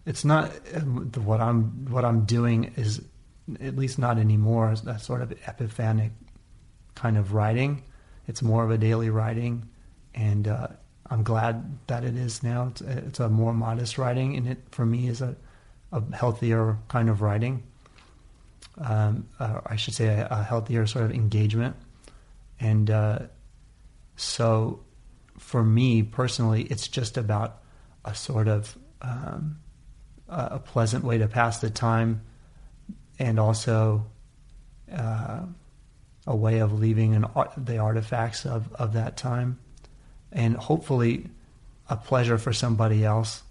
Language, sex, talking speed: English, male, 140 wpm